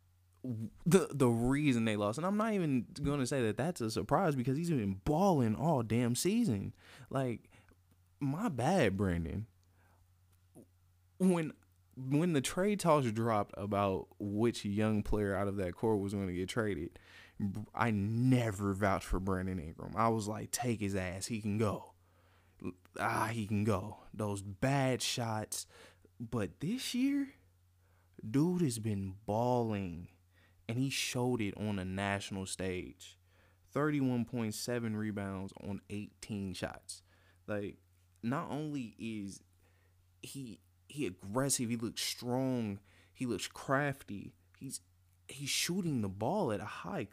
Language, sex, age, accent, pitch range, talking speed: English, male, 20-39, American, 90-125 Hz, 140 wpm